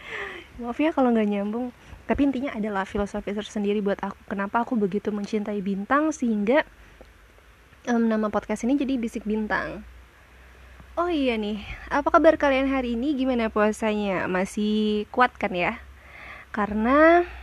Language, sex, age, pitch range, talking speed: Indonesian, female, 20-39, 205-250 Hz, 135 wpm